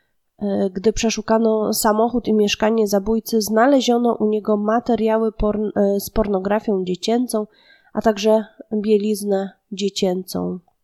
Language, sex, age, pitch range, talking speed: Polish, female, 20-39, 200-230 Hz, 100 wpm